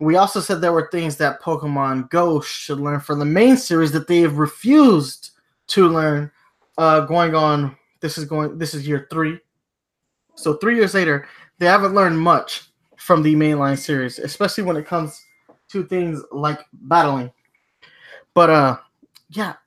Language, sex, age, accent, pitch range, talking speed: English, male, 20-39, American, 145-180 Hz, 160 wpm